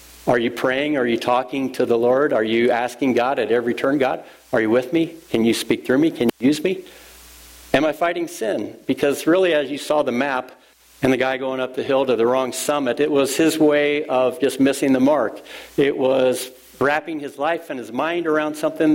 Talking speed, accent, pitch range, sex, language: 225 wpm, American, 120-150 Hz, male, English